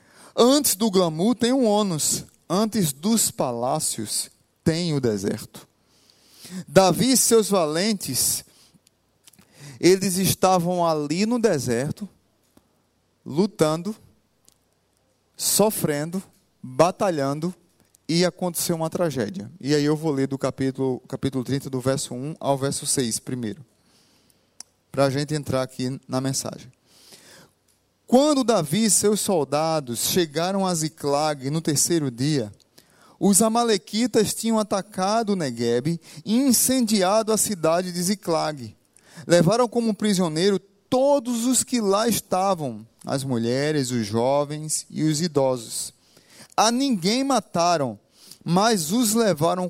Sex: male